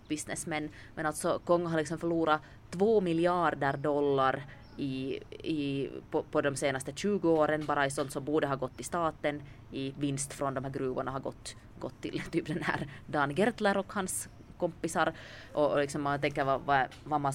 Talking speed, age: 185 wpm, 20-39